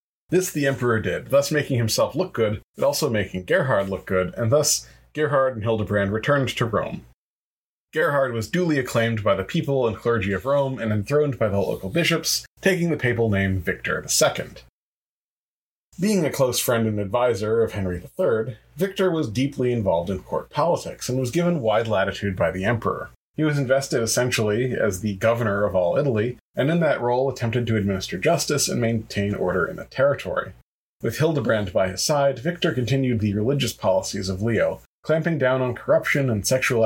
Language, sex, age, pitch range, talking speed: English, male, 30-49, 105-140 Hz, 180 wpm